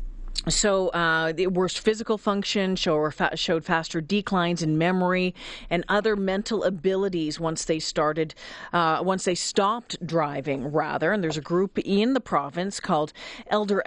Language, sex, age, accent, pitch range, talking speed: English, female, 40-59, American, 175-235 Hz, 145 wpm